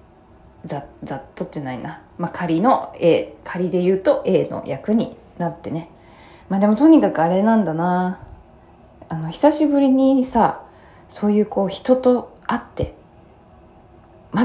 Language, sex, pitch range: Japanese, female, 160-215 Hz